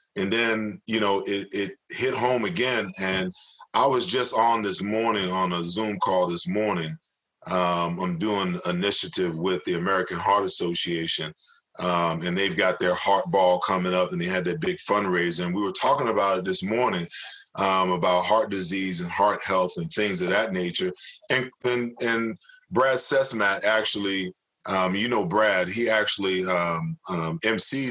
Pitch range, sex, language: 90-120 Hz, male, English